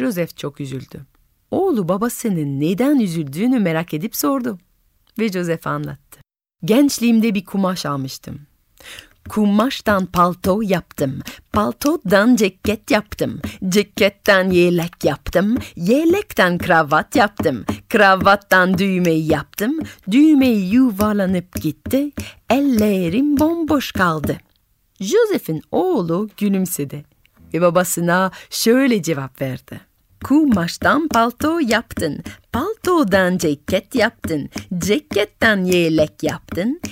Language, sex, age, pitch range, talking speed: Turkish, female, 40-59, 165-240 Hz, 90 wpm